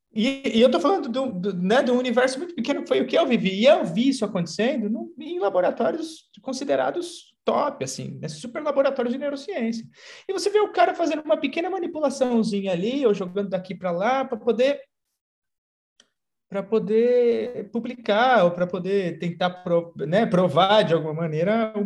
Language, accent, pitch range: Portuguese, Brazilian, 160-245 Hz